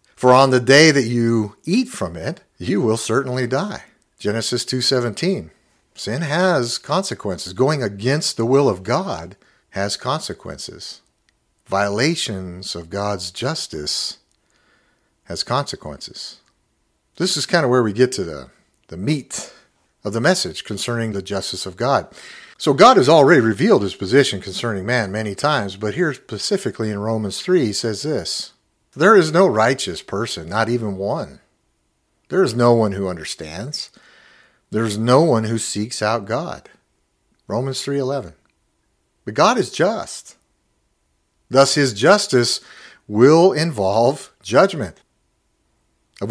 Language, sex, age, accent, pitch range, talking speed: English, male, 50-69, American, 100-140 Hz, 135 wpm